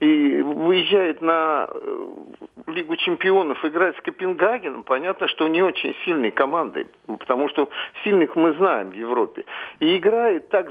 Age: 50-69